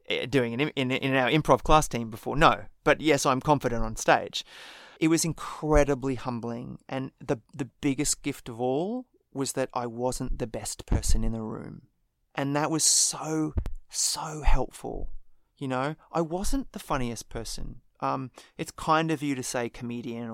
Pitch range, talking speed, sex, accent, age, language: 120-145 Hz, 175 wpm, male, Australian, 30-49, English